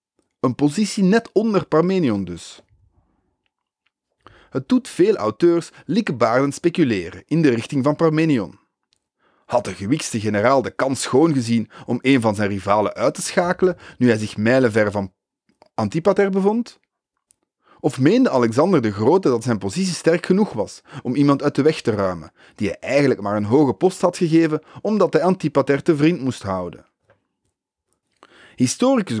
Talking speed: 155 wpm